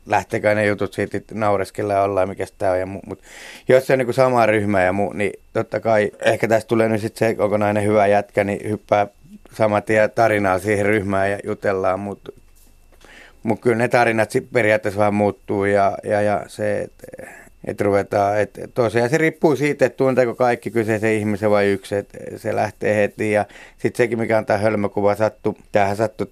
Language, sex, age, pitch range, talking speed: Finnish, male, 30-49, 100-115 Hz, 180 wpm